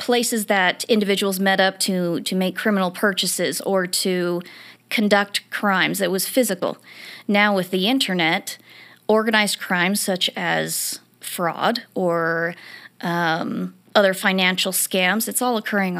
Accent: American